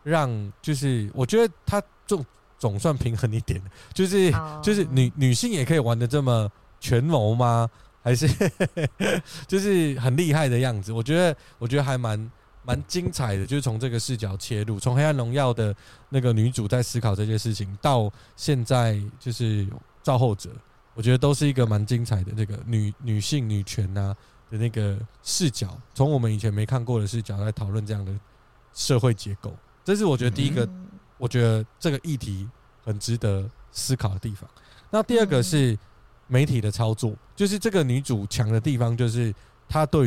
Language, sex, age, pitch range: Chinese, male, 20-39, 110-145 Hz